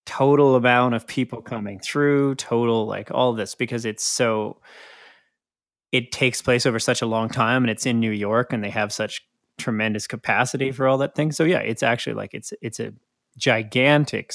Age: 30-49